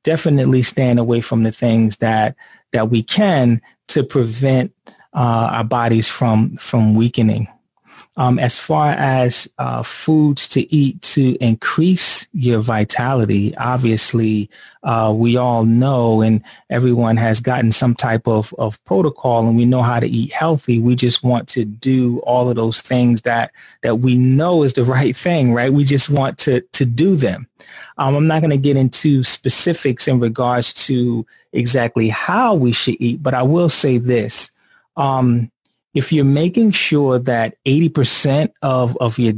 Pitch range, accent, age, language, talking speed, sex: 115-135 Hz, American, 30-49, English, 165 wpm, male